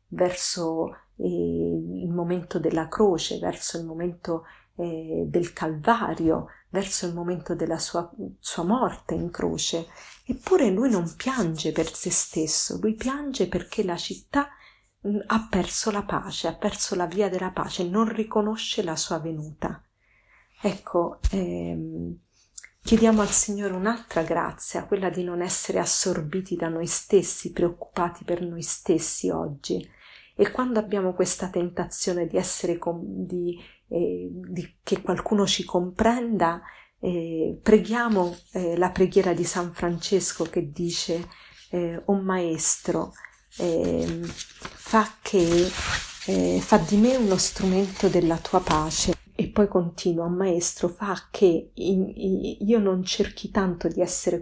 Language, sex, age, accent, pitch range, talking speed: Italian, female, 40-59, native, 170-200 Hz, 130 wpm